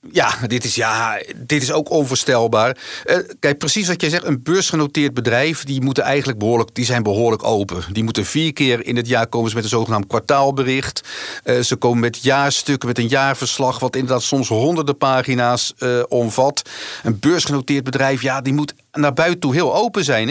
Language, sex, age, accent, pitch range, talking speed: Dutch, male, 50-69, Dutch, 115-145 Hz, 190 wpm